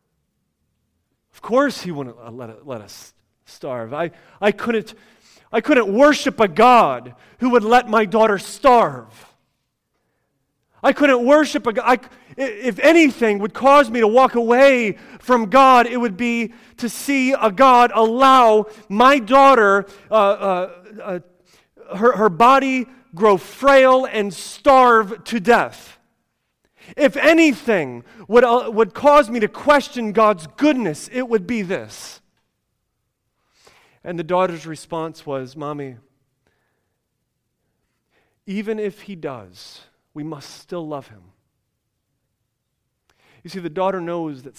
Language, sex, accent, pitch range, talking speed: English, male, American, 160-245 Hz, 125 wpm